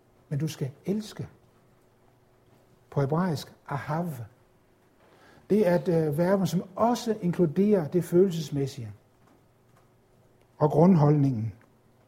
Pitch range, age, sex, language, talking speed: 125-180 Hz, 60-79, male, Danish, 90 wpm